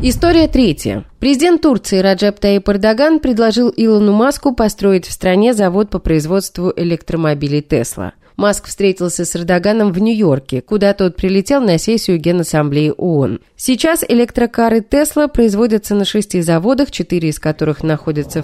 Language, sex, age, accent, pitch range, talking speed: Russian, female, 30-49, native, 160-220 Hz, 135 wpm